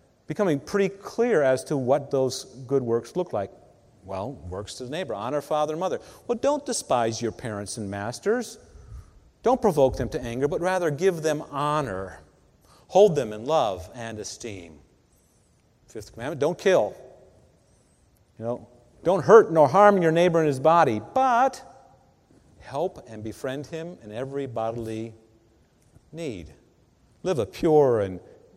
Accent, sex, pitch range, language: American, male, 115-160 Hz, English